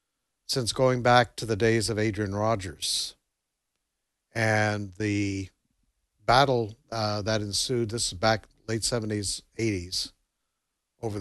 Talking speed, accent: 120 wpm, American